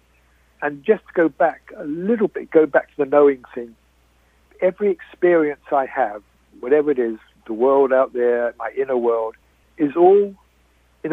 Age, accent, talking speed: 60-79, British, 165 wpm